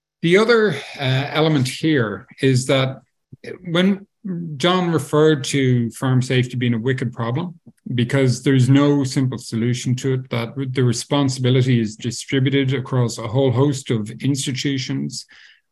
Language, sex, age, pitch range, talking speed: English, male, 50-69, 120-150 Hz, 135 wpm